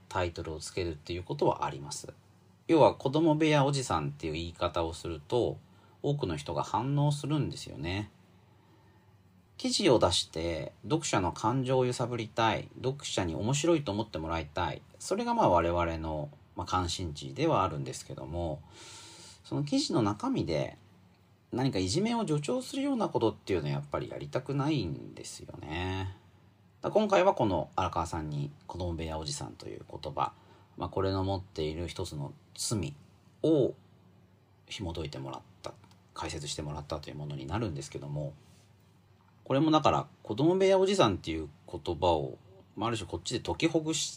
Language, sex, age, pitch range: Japanese, male, 40-59, 85-140 Hz